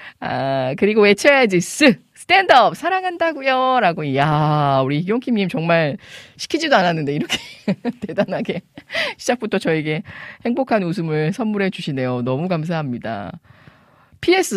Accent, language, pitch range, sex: native, Korean, 155-230 Hz, female